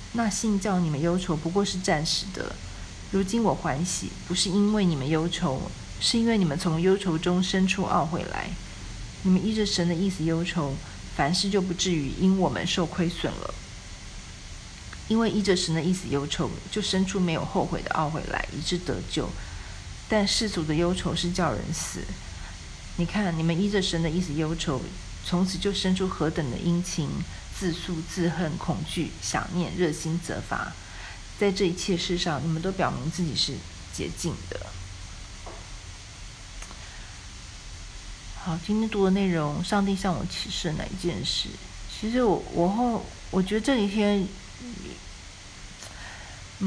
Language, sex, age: Chinese, female, 40-59